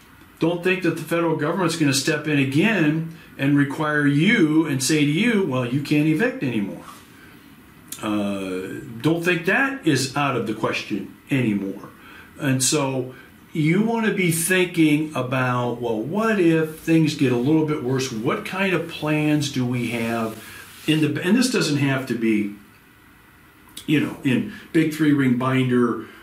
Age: 50-69